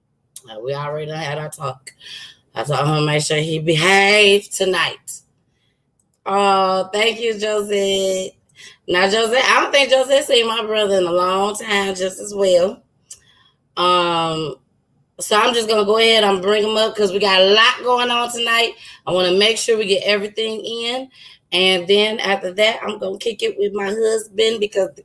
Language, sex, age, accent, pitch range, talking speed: English, female, 20-39, American, 180-230 Hz, 180 wpm